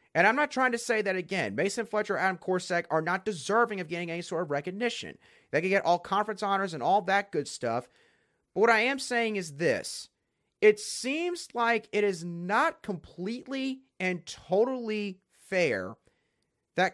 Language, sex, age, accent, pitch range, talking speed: English, male, 30-49, American, 160-220 Hz, 175 wpm